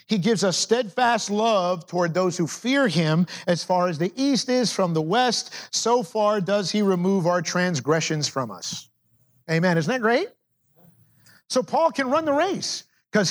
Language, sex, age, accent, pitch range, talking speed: English, male, 50-69, American, 165-225 Hz, 175 wpm